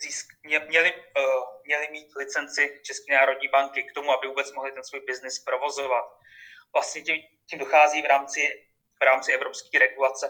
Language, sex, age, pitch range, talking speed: Czech, male, 20-39, 130-150 Hz, 165 wpm